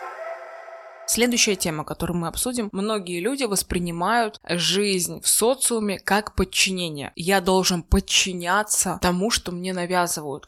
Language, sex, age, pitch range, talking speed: Russian, female, 20-39, 170-205 Hz, 115 wpm